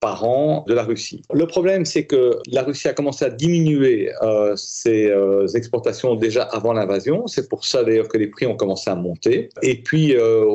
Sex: male